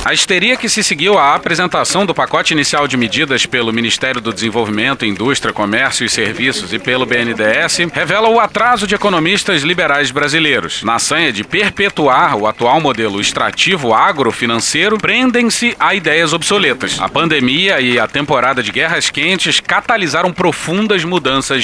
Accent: Brazilian